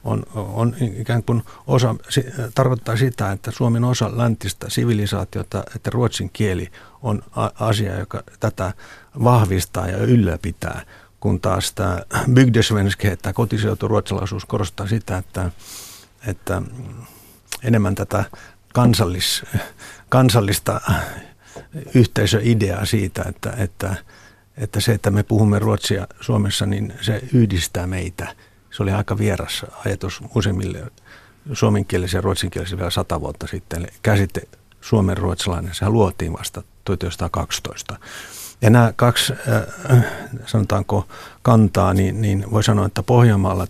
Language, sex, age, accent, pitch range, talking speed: Finnish, male, 60-79, native, 100-115 Hz, 110 wpm